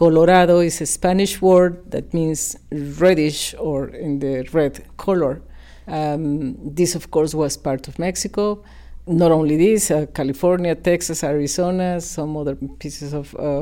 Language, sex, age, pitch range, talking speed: English, female, 50-69, 150-180 Hz, 145 wpm